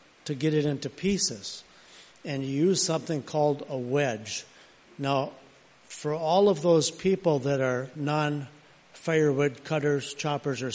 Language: English